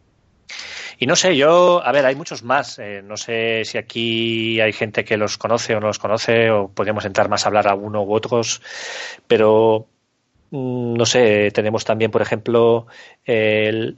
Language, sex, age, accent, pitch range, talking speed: Spanish, male, 20-39, Spanish, 105-120 Hz, 180 wpm